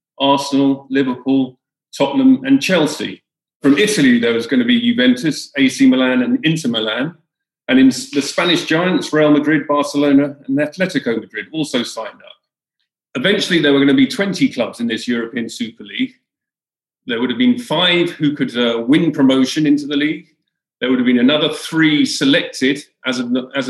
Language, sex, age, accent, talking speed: English, male, 40-59, British, 170 wpm